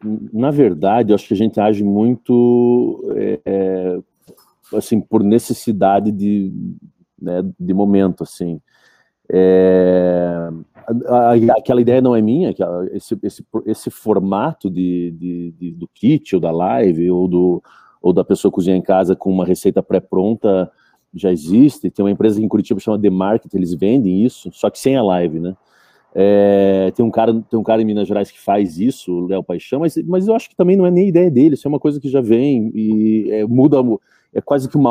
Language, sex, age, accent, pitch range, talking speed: Portuguese, male, 40-59, Brazilian, 95-120 Hz, 185 wpm